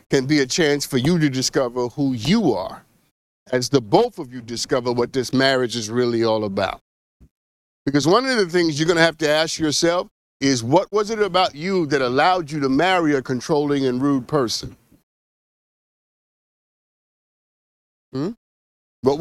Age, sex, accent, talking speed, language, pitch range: 50-69, male, American, 170 wpm, English, 130-210 Hz